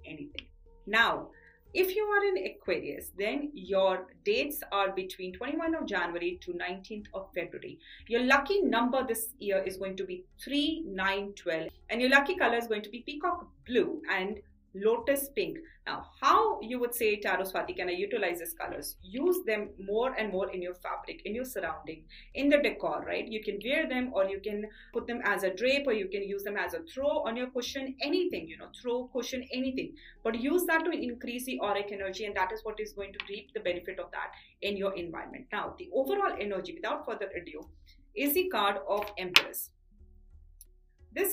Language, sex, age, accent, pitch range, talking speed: English, female, 40-59, Indian, 195-290 Hz, 195 wpm